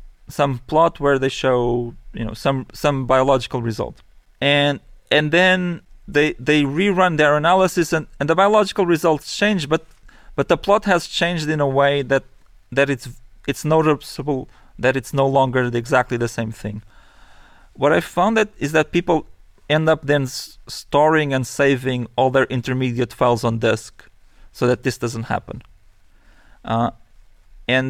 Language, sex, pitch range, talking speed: English, male, 125-155 Hz, 160 wpm